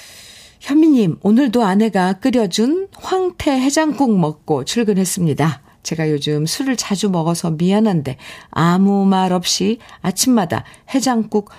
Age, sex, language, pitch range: 50-69, female, Korean, 160-220 Hz